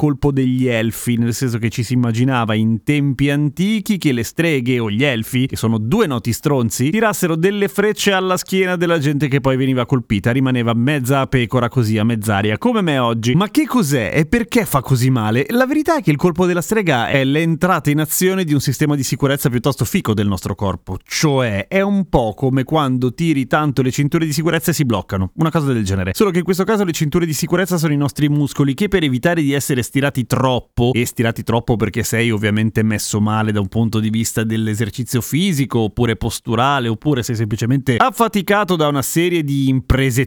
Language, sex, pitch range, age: Italian, male, 120-170 Hz, 30-49